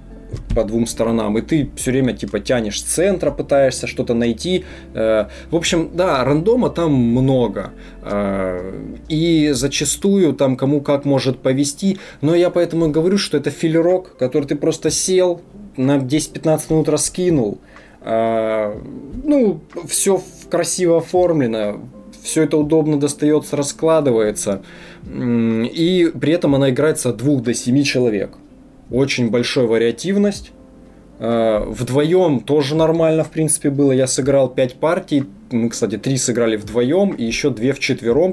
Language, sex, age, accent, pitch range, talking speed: Russian, male, 20-39, native, 120-165 Hz, 135 wpm